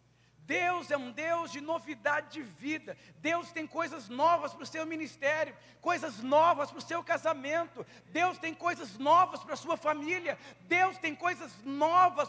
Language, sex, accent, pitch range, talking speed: Portuguese, male, Brazilian, 245-340 Hz, 165 wpm